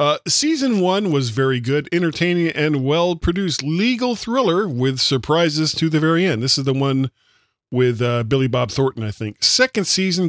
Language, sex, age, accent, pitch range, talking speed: English, male, 40-59, American, 120-170 Hz, 175 wpm